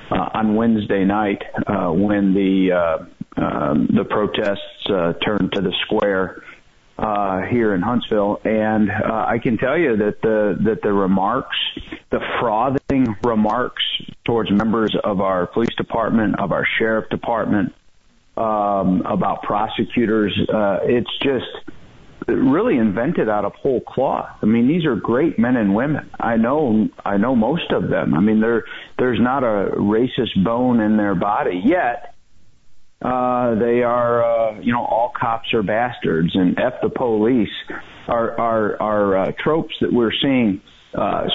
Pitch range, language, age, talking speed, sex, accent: 105-140 Hz, English, 40-59, 155 wpm, male, American